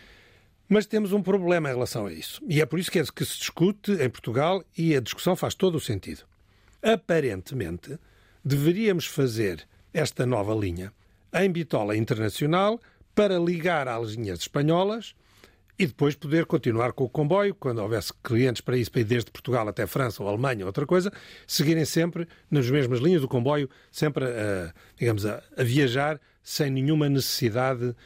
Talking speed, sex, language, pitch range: 165 wpm, male, Portuguese, 115-175 Hz